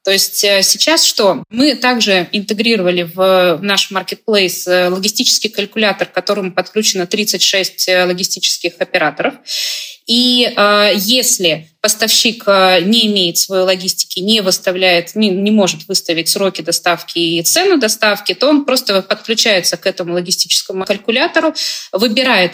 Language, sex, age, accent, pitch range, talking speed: Russian, female, 20-39, native, 185-230 Hz, 125 wpm